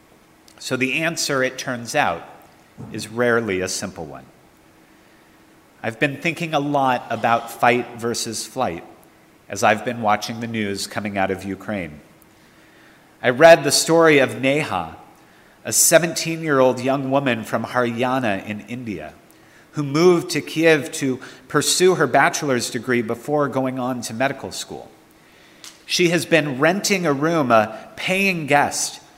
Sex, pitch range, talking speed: male, 120-155 Hz, 140 wpm